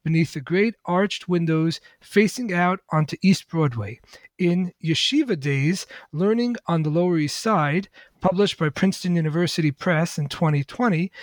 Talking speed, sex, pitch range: 140 wpm, male, 155-200 Hz